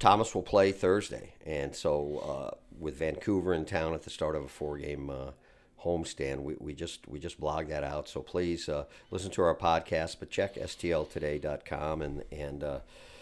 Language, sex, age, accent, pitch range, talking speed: English, male, 50-69, American, 85-130 Hz, 185 wpm